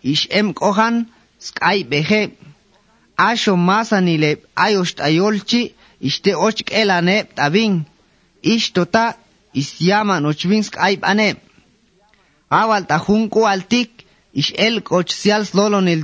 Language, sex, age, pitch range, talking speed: English, male, 30-49, 175-215 Hz, 110 wpm